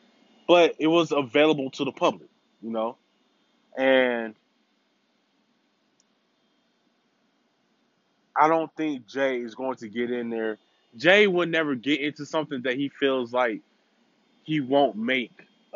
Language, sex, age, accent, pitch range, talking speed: English, male, 20-39, American, 125-165 Hz, 125 wpm